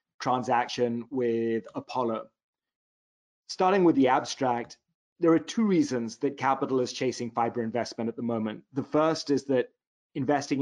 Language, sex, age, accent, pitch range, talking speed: English, male, 30-49, British, 125-150 Hz, 140 wpm